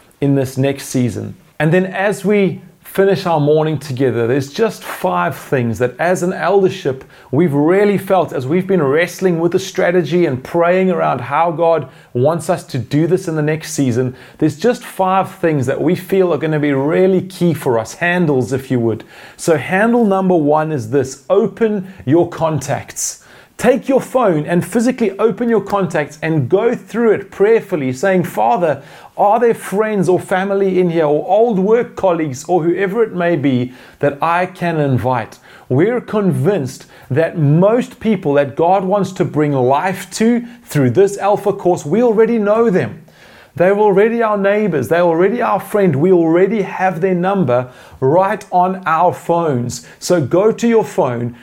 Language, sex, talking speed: English, male, 175 wpm